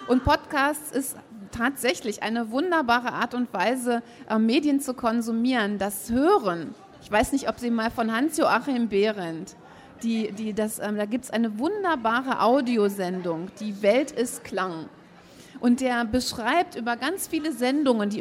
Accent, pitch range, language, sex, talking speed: German, 215-260 Hz, German, female, 140 wpm